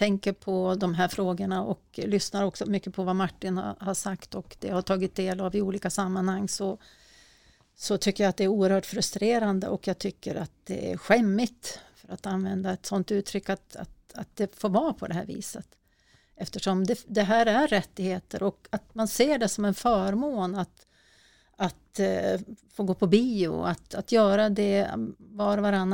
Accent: native